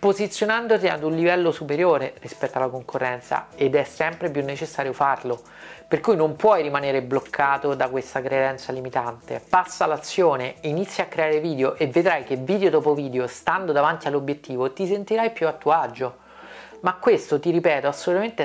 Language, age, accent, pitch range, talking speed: Italian, 40-59, native, 140-175 Hz, 165 wpm